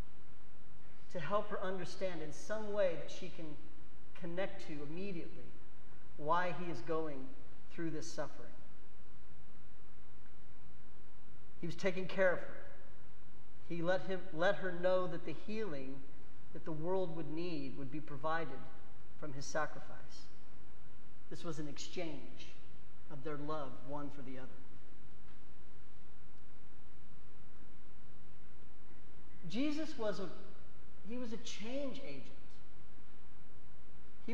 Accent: American